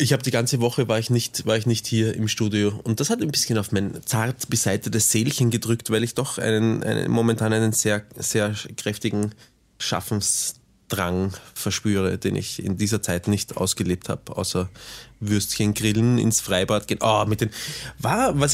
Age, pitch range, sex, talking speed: 20-39, 110-135 Hz, male, 180 wpm